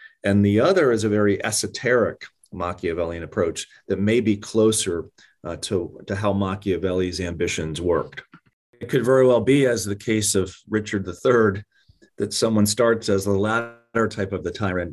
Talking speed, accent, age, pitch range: 165 wpm, American, 30-49, 85-105 Hz